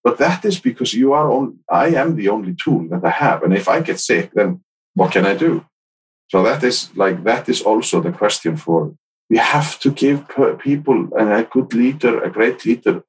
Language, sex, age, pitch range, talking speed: English, male, 50-69, 100-150 Hz, 205 wpm